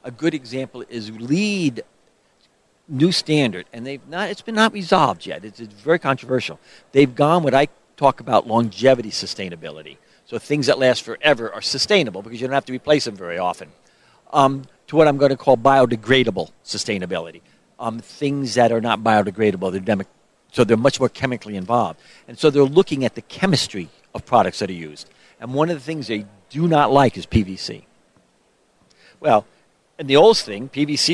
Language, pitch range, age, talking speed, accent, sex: English, 115-155 Hz, 50-69, 185 wpm, American, male